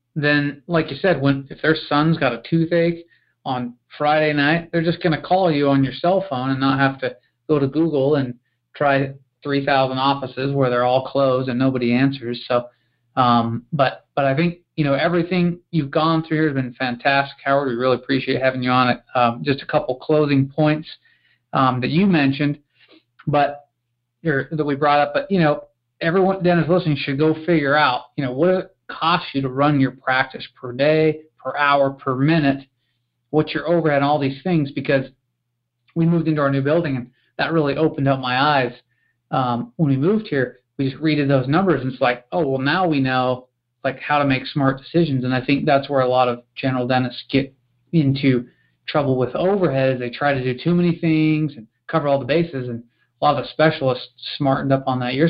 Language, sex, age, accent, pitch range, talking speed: English, male, 40-59, American, 130-155 Hz, 205 wpm